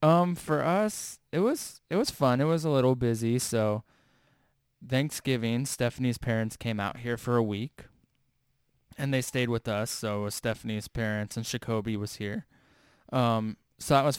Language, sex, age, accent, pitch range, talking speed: English, male, 20-39, American, 105-125 Hz, 170 wpm